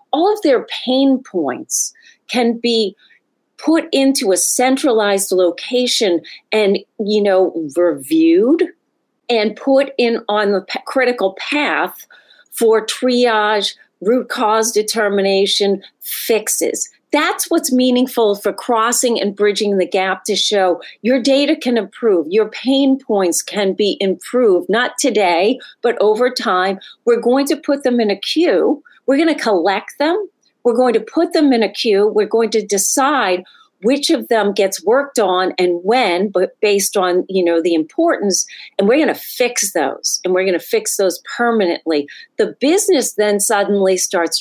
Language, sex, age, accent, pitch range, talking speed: English, female, 40-59, American, 185-260 Hz, 155 wpm